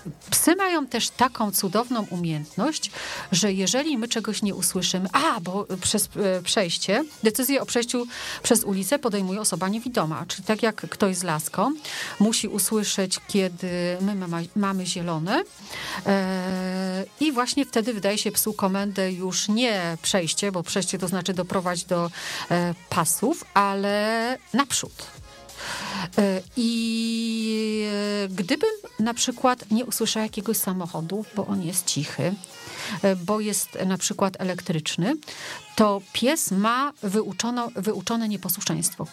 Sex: female